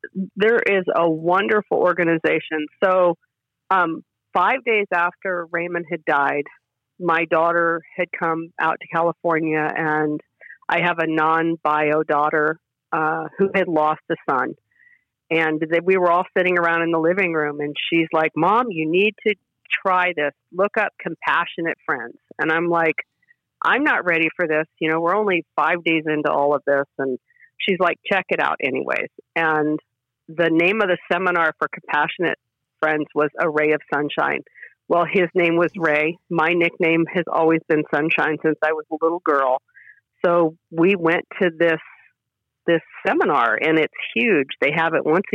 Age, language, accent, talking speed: 50-69, English, American, 165 wpm